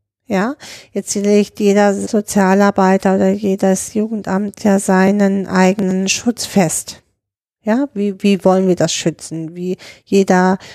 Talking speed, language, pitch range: 125 wpm, German, 190-225 Hz